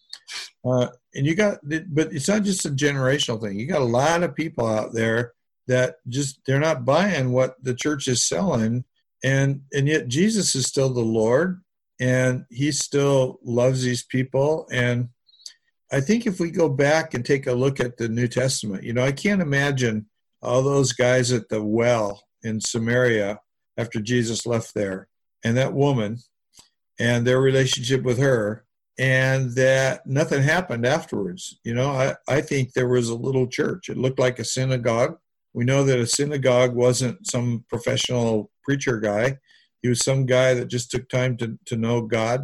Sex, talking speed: male, 175 wpm